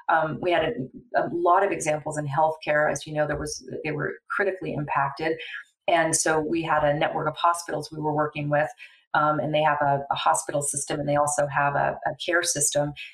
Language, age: English, 40-59